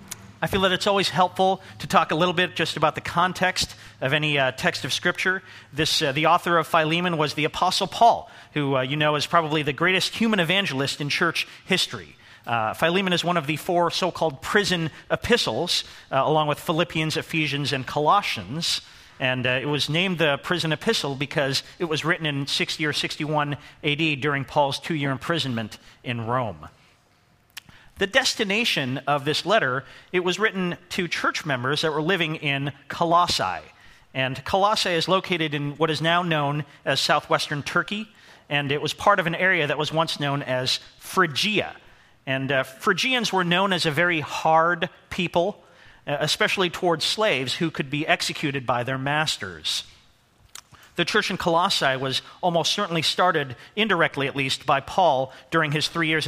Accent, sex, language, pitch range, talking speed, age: American, male, English, 140-180 Hz, 175 wpm, 40-59